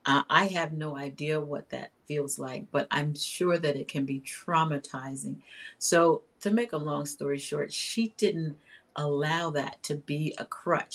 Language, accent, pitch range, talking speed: English, American, 145-180 Hz, 175 wpm